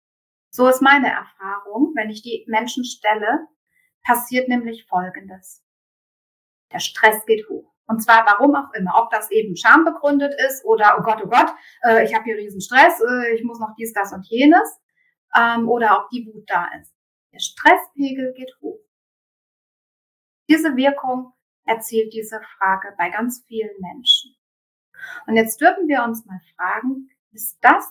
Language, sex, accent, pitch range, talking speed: German, female, German, 205-280 Hz, 155 wpm